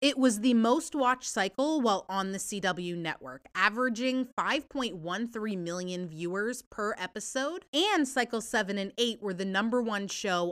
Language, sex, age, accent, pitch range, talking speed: English, female, 30-49, American, 180-245 Hz, 155 wpm